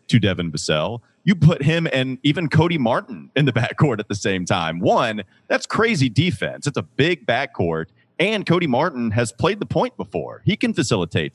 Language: English